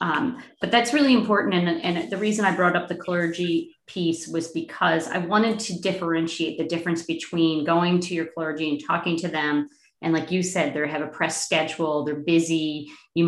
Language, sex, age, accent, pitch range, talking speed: English, female, 40-59, American, 160-195 Hz, 200 wpm